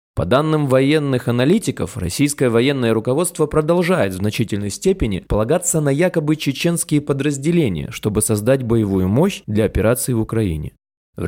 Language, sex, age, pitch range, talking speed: Russian, male, 20-39, 110-145 Hz, 135 wpm